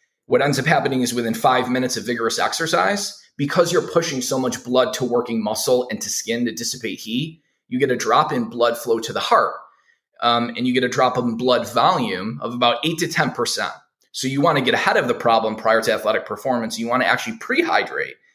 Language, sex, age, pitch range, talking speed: English, male, 20-39, 120-150 Hz, 220 wpm